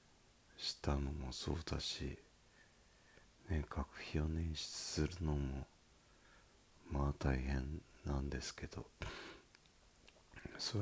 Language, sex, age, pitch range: Japanese, male, 40-59, 70-85 Hz